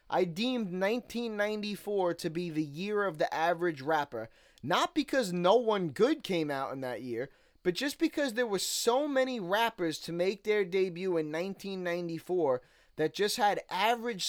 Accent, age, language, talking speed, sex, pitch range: American, 20-39, English, 165 wpm, male, 165-220 Hz